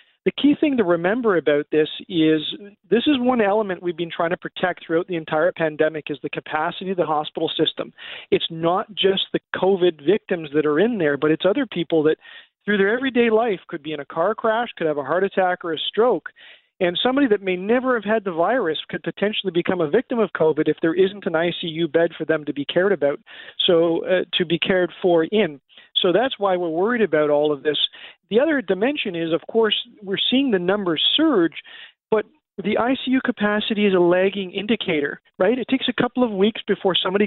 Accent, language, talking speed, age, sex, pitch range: American, English, 215 wpm, 40-59, male, 165-215 Hz